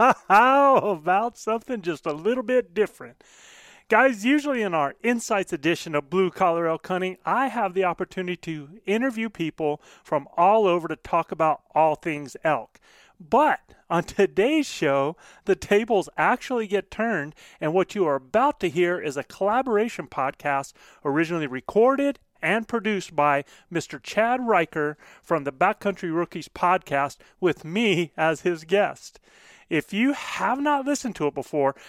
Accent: American